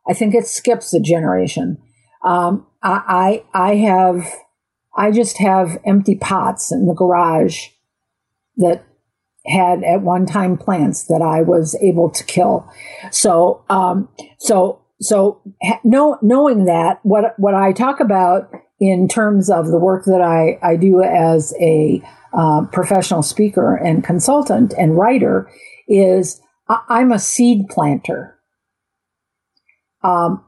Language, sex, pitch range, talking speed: English, female, 175-205 Hz, 130 wpm